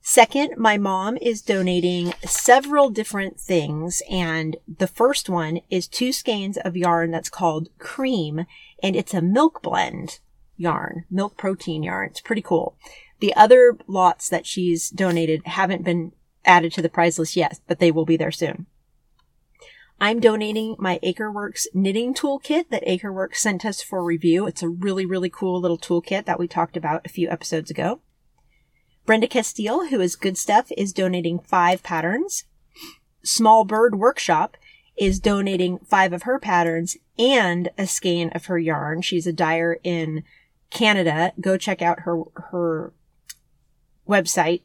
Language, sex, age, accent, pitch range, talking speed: English, female, 30-49, American, 170-210 Hz, 155 wpm